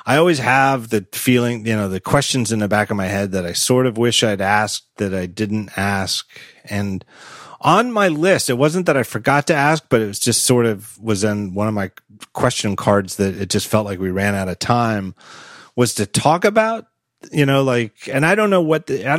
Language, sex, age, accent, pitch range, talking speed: English, male, 30-49, American, 105-135 Hz, 230 wpm